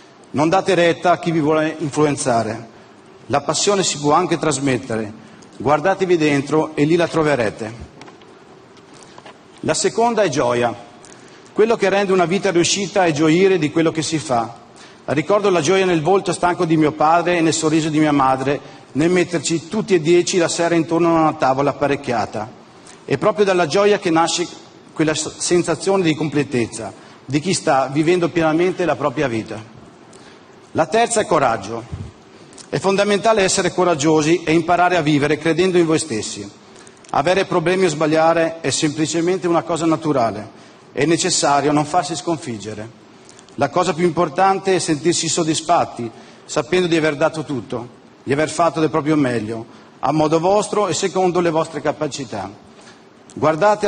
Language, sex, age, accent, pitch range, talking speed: Italian, male, 40-59, native, 140-175 Hz, 155 wpm